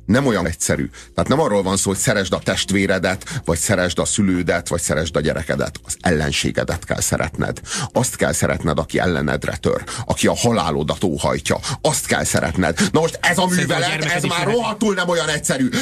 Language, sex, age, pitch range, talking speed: Hungarian, male, 30-49, 135-185 Hz, 180 wpm